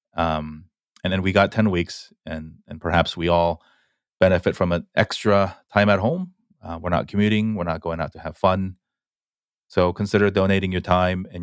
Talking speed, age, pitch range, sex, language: 190 wpm, 30-49, 80-95 Hz, male, English